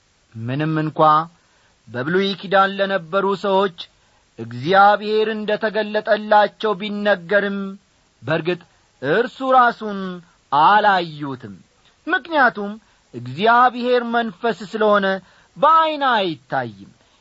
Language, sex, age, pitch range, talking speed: Amharic, male, 40-59, 140-220 Hz, 65 wpm